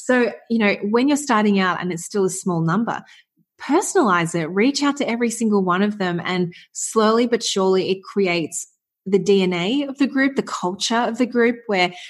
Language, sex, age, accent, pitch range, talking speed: English, female, 20-39, Australian, 175-215 Hz, 200 wpm